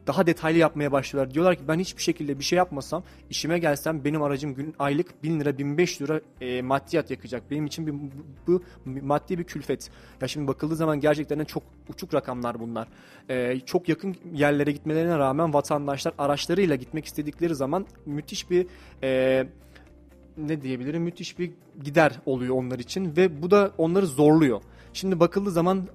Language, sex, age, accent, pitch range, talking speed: Turkish, male, 30-49, native, 135-165 Hz, 165 wpm